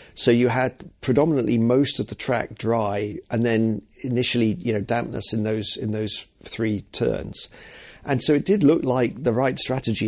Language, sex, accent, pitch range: English, male, British, 105-120 Hz